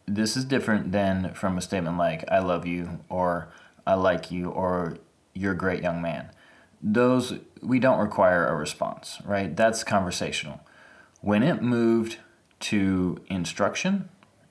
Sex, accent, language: male, American, English